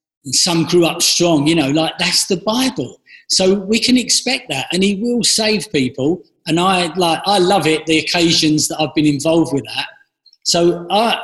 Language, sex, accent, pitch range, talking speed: English, male, British, 155-195 Hz, 200 wpm